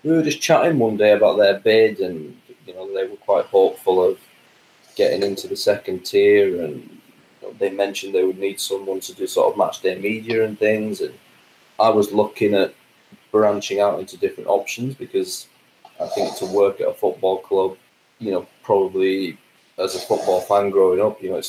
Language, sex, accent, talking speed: English, male, British, 200 wpm